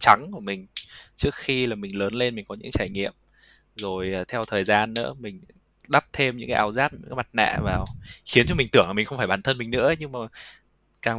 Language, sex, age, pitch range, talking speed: Vietnamese, male, 20-39, 105-130 Hz, 230 wpm